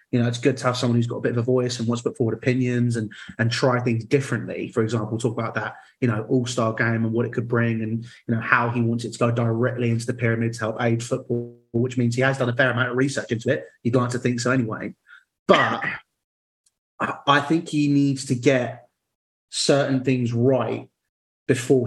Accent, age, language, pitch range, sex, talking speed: British, 30-49, English, 115-130 Hz, male, 235 wpm